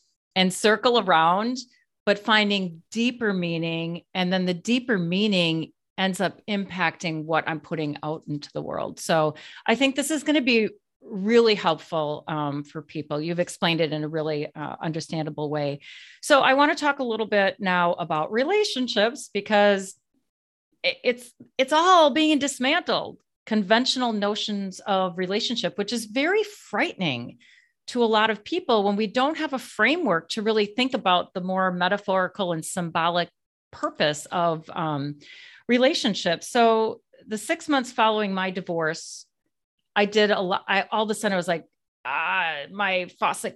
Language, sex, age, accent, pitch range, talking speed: English, female, 40-59, American, 170-240 Hz, 155 wpm